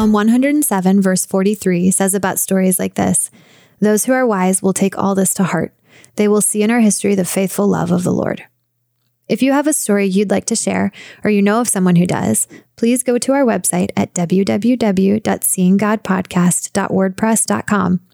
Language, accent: English, American